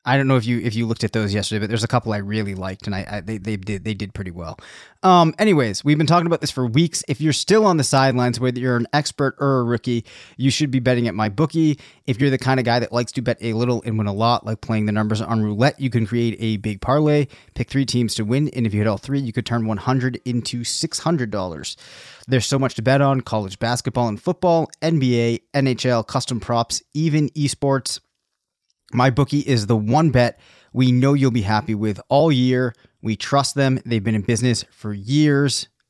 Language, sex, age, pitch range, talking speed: English, male, 30-49, 115-140 Hz, 235 wpm